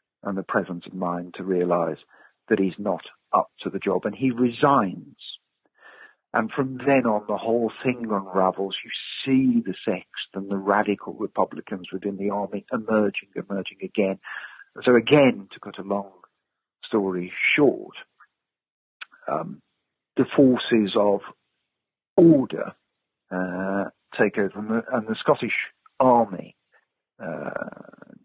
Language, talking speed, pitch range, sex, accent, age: English, 130 wpm, 95-115 Hz, male, British, 50-69